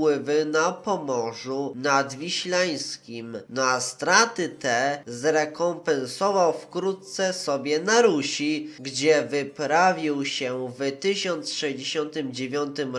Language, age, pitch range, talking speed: Polish, 20-39, 140-190 Hz, 85 wpm